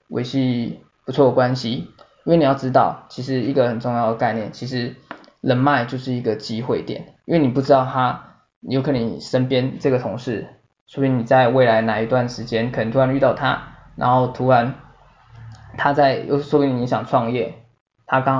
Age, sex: 20-39, male